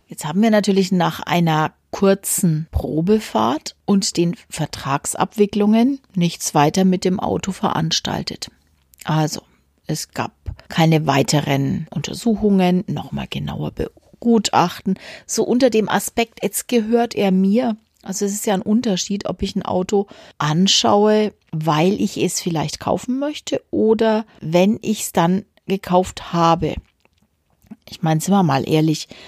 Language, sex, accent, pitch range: German, female, German, 160-210 Hz